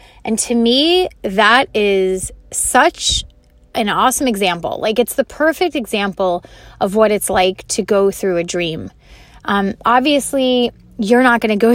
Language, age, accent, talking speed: English, 20-39, American, 155 wpm